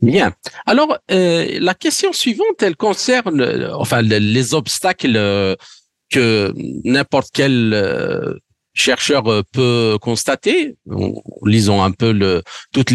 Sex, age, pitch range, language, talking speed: male, 50-69, 110-150 Hz, French, 100 wpm